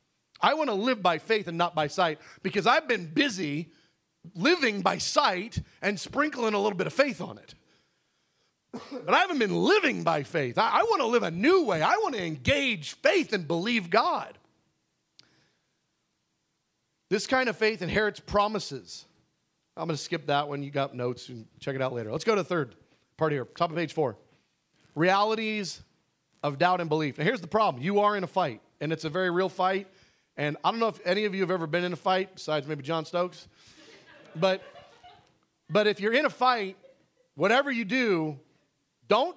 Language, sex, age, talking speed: English, male, 40-59, 195 wpm